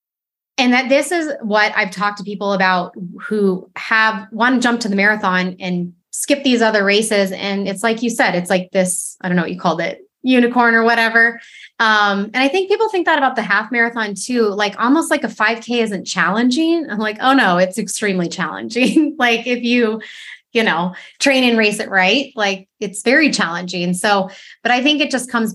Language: English